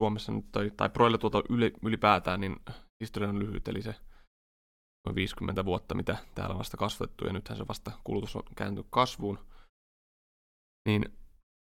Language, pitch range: Finnish, 95-105 Hz